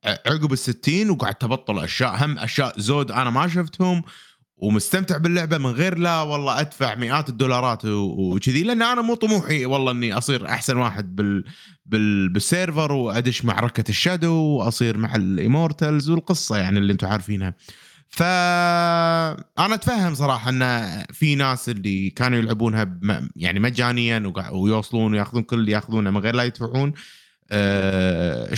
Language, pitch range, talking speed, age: Arabic, 110-155 Hz, 140 wpm, 20-39